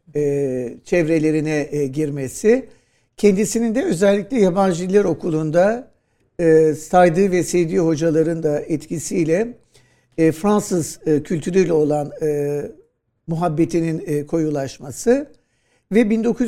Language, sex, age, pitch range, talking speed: Turkish, male, 60-79, 150-205 Hz, 100 wpm